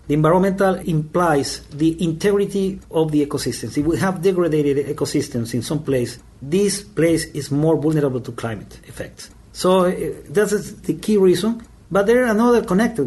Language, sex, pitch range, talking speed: English, male, 145-185 Hz, 160 wpm